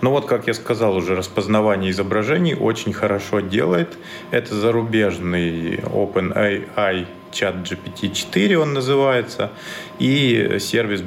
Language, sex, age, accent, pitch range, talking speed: Russian, male, 30-49, native, 95-125 Hz, 110 wpm